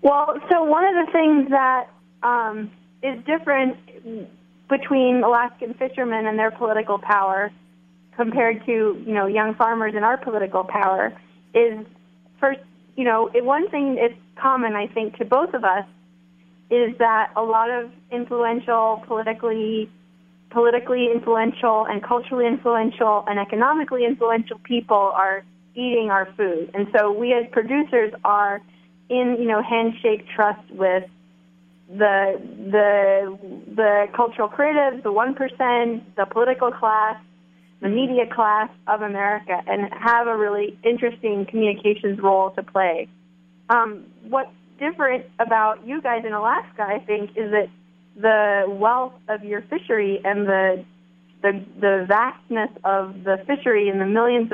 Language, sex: English, female